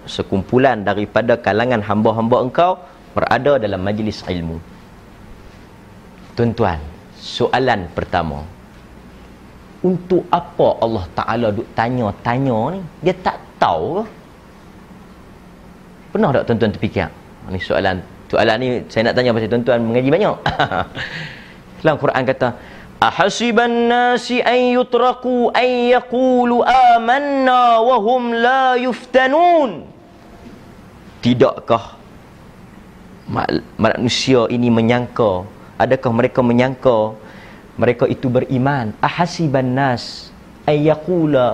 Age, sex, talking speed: 30-49, male, 85 wpm